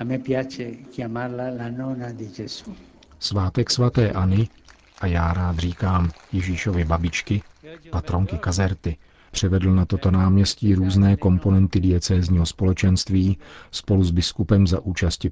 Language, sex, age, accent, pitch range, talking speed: Czech, male, 50-69, native, 85-100 Hz, 95 wpm